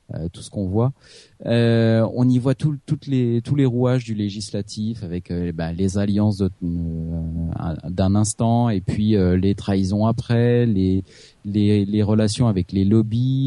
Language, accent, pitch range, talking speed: French, French, 95-120 Hz, 175 wpm